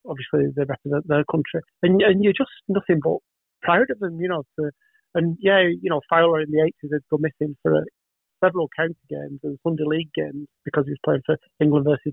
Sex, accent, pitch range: male, British, 145-165 Hz